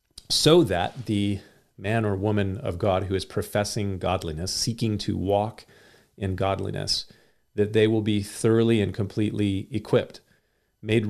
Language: English